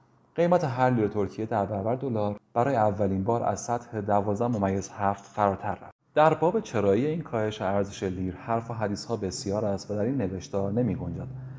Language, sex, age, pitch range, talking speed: Persian, male, 30-49, 95-125 Hz, 175 wpm